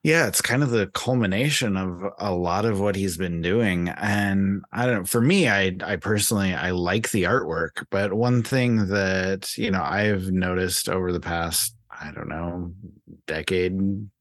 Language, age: English, 30-49